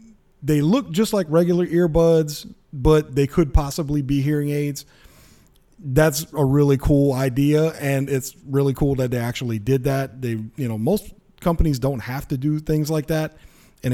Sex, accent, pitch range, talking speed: male, American, 130-150 Hz, 170 wpm